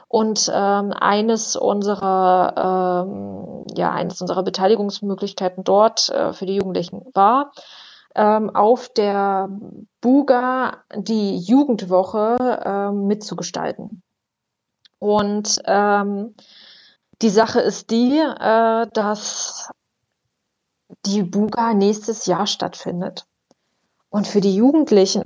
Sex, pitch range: female, 195-240 Hz